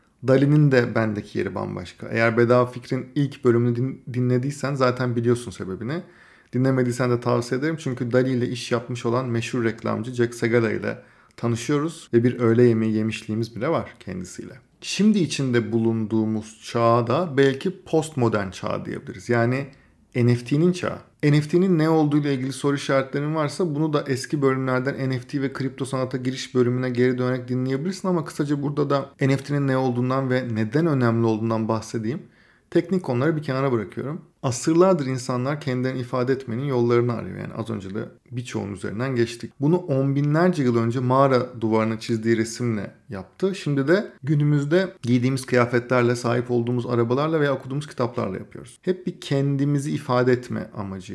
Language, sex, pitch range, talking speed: Turkish, male, 120-145 Hz, 150 wpm